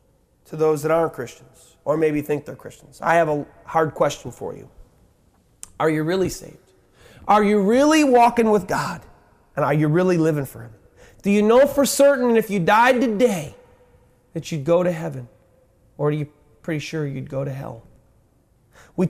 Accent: American